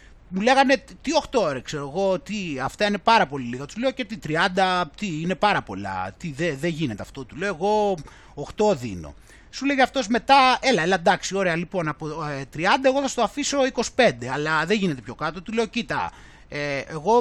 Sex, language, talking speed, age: male, Greek, 200 wpm, 30-49